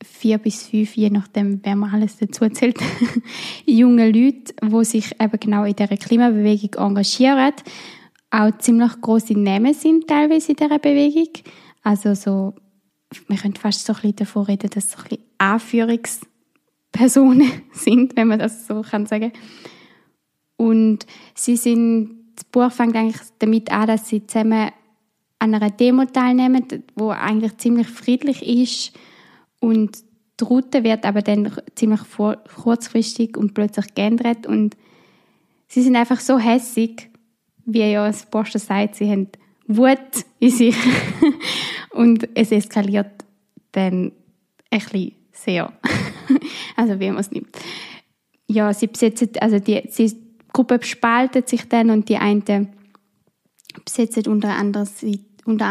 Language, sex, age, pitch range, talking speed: German, female, 10-29, 210-240 Hz, 135 wpm